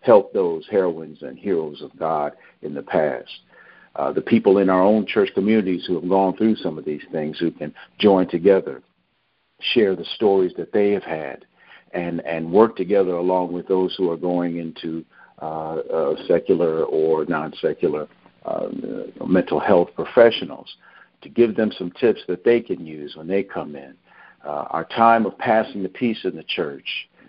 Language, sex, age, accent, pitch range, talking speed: English, male, 60-79, American, 90-110 Hz, 180 wpm